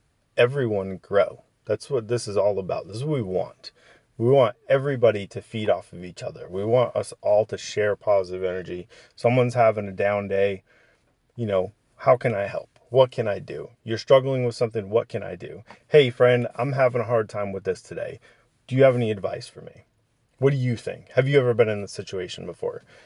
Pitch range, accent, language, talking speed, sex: 100-120 Hz, American, English, 215 wpm, male